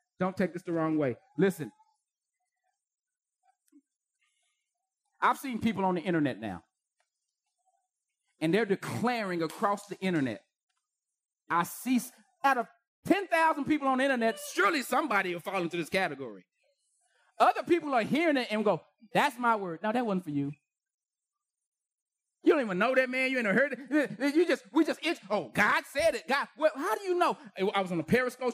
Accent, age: American, 30-49